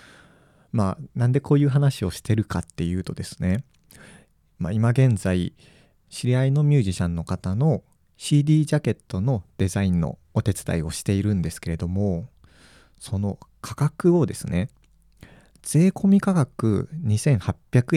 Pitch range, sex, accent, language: 95-135 Hz, male, native, Japanese